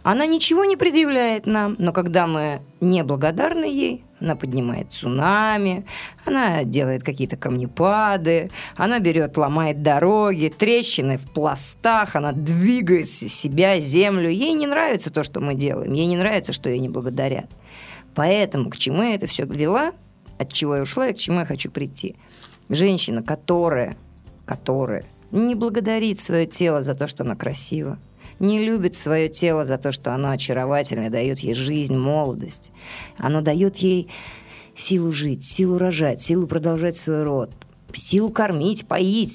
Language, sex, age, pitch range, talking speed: Russian, female, 30-49, 145-215 Hz, 150 wpm